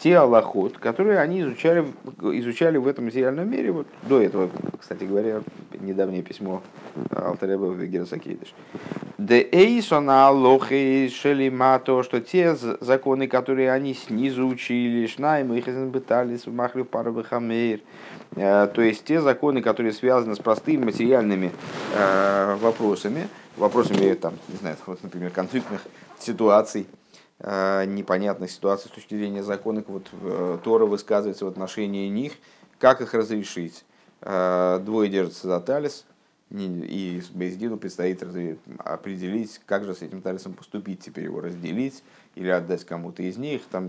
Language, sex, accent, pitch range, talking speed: Russian, male, native, 95-130 Hz, 125 wpm